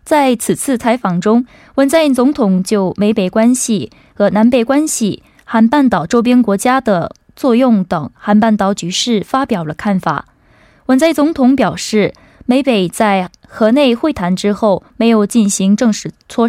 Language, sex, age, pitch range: Korean, female, 20-39, 195-255 Hz